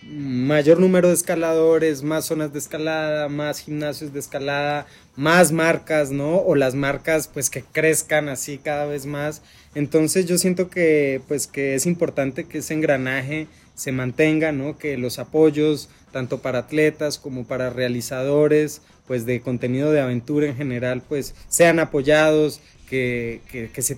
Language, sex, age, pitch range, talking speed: Spanish, male, 20-39, 130-155 Hz, 155 wpm